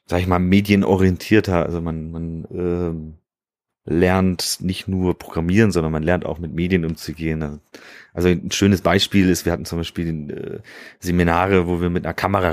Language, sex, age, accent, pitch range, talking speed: German, male, 30-49, German, 85-105 Hz, 170 wpm